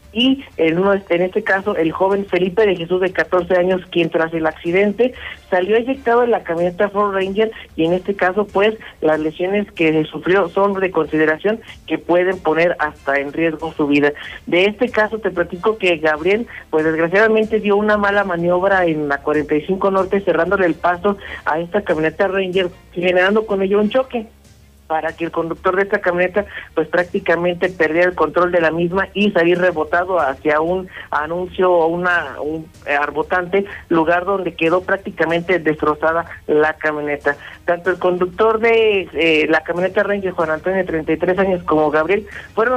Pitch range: 160-195 Hz